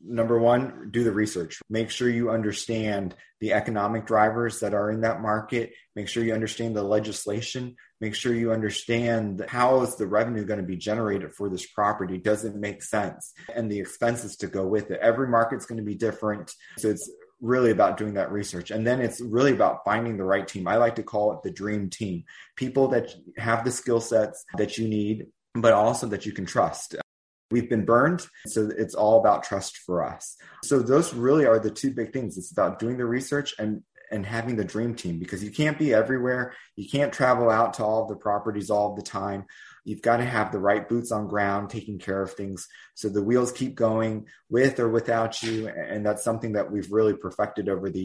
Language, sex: English, male